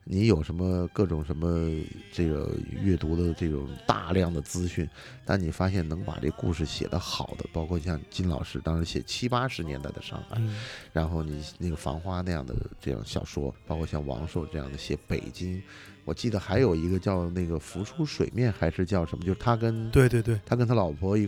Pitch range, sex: 85-100 Hz, male